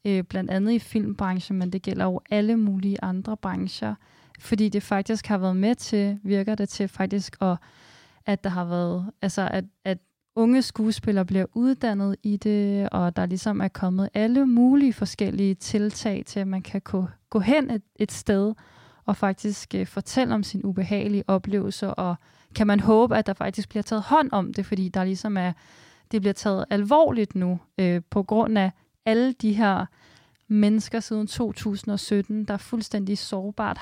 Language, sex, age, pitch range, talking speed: Danish, female, 30-49, 195-220 Hz, 175 wpm